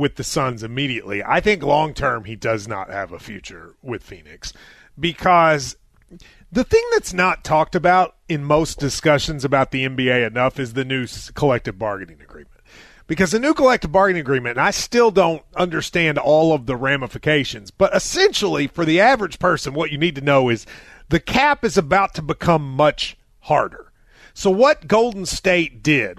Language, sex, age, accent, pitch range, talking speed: English, male, 30-49, American, 145-220 Hz, 170 wpm